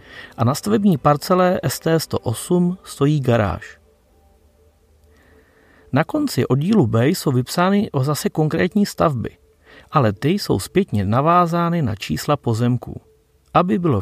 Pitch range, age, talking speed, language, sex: 110-165 Hz, 40-59, 110 wpm, Czech, male